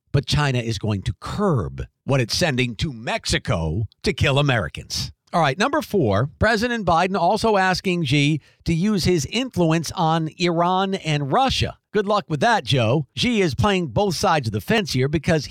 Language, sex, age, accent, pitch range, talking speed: English, male, 50-69, American, 140-195 Hz, 180 wpm